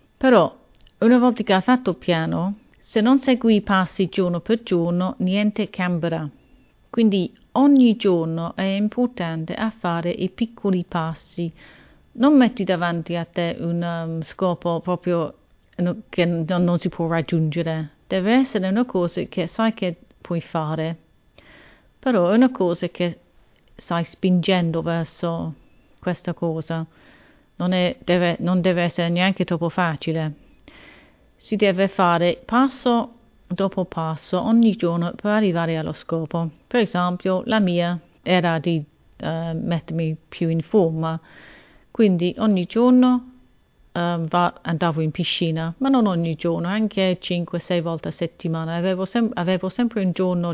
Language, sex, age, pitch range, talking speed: Italian, female, 40-59, 170-200 Hz, 135 wpm